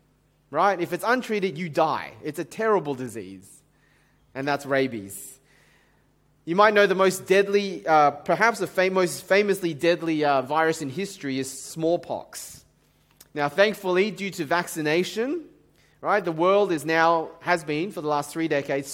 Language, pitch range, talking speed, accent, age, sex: English, 150-200 Hz, 155 wpm, Australian, 30-49, male